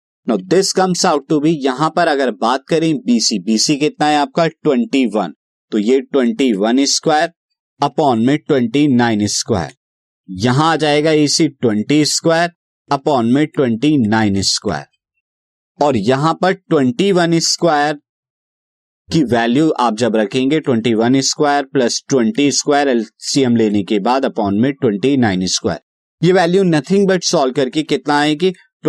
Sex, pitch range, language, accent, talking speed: male, 115-155 Hz, Hindi, native, 145 wpm